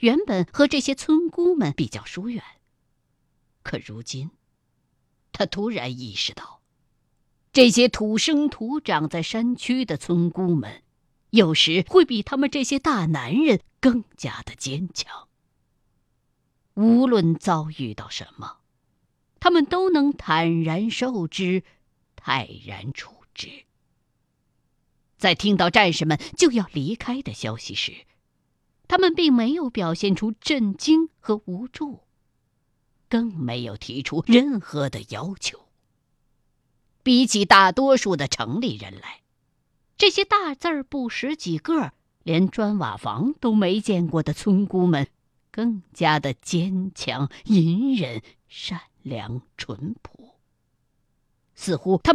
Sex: female